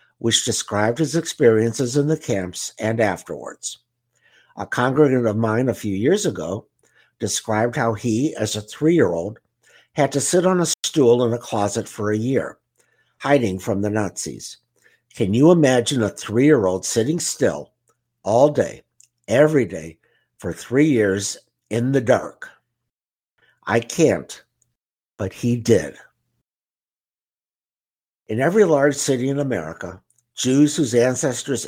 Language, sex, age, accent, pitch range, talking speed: English, male, 60-79, American, 105-135 Hz, 140 wpm